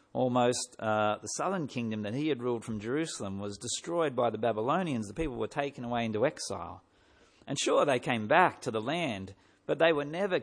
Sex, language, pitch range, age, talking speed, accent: male, English, 110-150 Hz, 50-69, 200 wpm, Australian